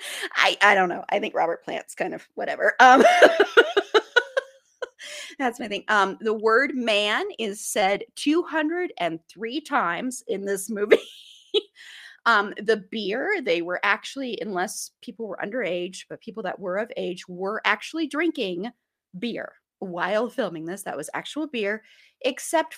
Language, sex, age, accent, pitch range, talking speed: English, female, 30-49, American, 195-285 Hz, 140 wpm